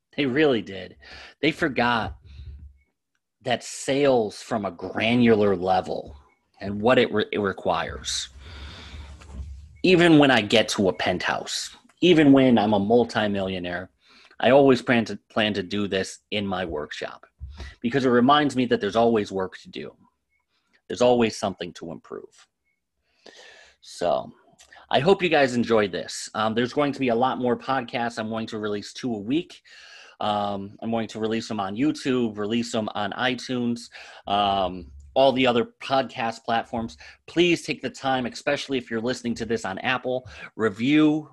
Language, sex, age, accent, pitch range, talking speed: English, male, 30-49, American, 100-125 Hz, 155 wpm